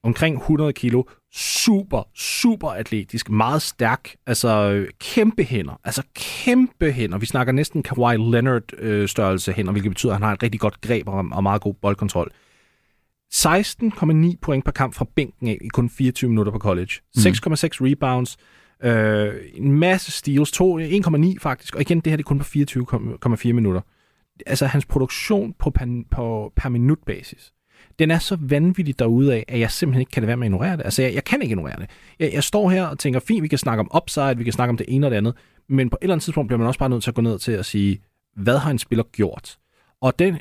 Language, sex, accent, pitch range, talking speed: Danish, male, native, 110-145 Hz, 215 wpm